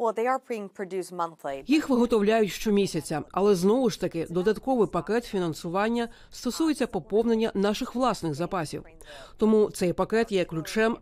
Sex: female